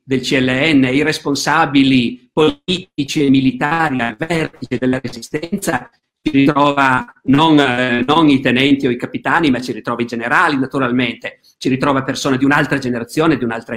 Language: Italian